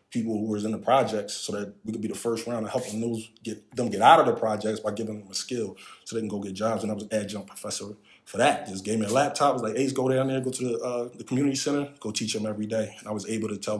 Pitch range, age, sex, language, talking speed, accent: 105-115 Hz, 20-39, male, English, 315 wpm, American